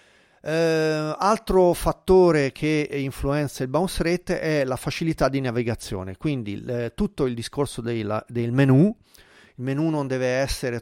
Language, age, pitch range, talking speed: Italian, 40-59, 120-150 Hz, 145 wpm